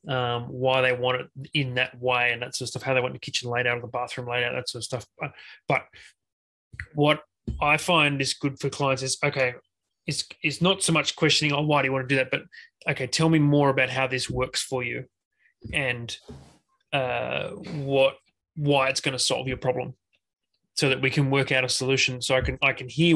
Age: 30-49